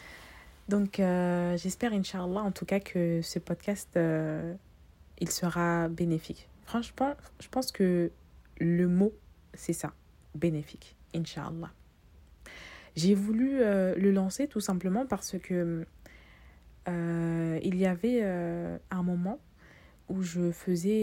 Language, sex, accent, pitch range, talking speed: French, female, French, 165-195 Hz, 120 wpm